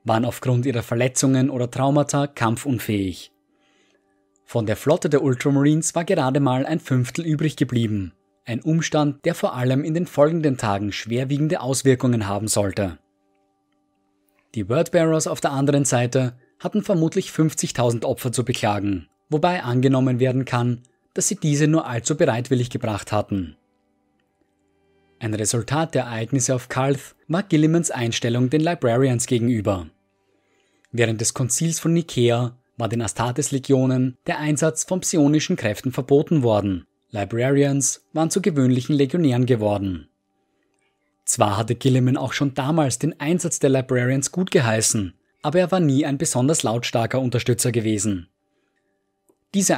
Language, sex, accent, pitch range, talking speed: German, male, German, 110-150 Hz, 135 wpm